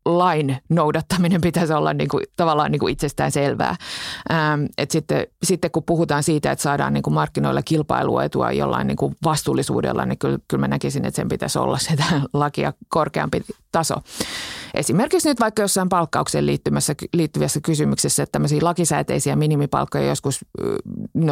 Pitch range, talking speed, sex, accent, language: 145-180 Hz, 120 wpm, female, native, Finnish